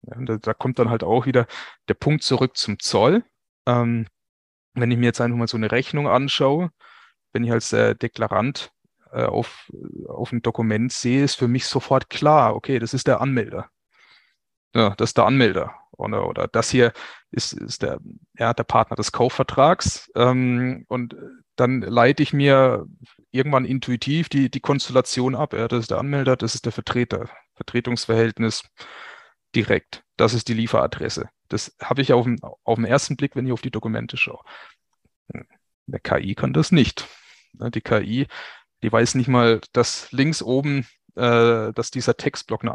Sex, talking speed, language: male, 165 wpm, German